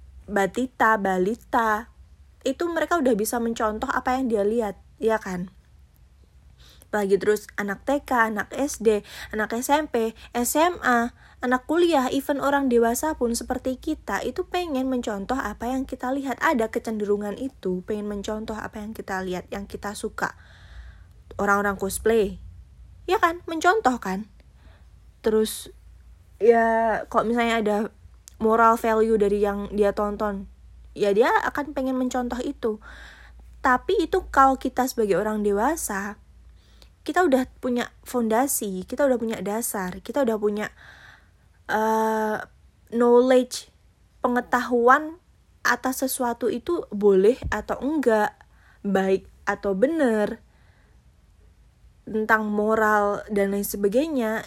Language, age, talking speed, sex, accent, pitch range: Indonesian, 20-39, 120 wpm, female, native, 205-260 Hz